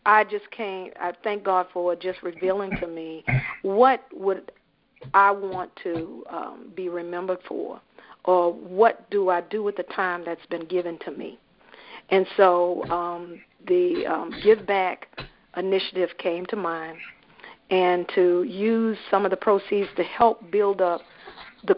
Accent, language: American, English